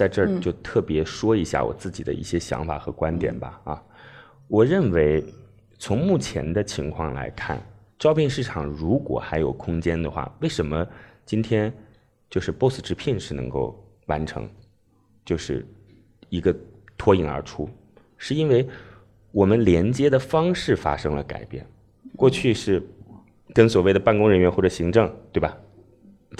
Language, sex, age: Chinese, male, 20-39